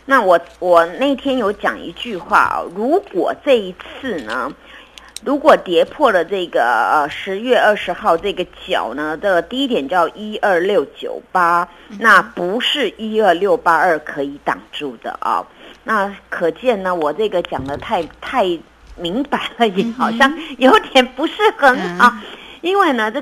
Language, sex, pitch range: Chinese, female, 170-245 Hz